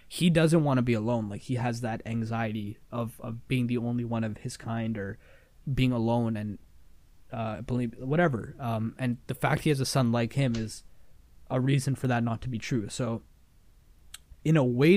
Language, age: English, 20-39